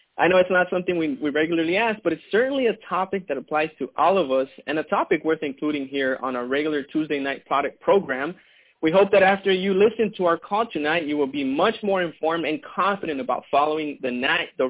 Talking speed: 225 wpm